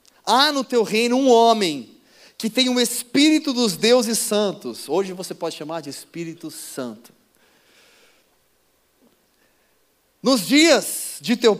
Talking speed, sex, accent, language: 130 wpm, male, Brazilian, Portuguese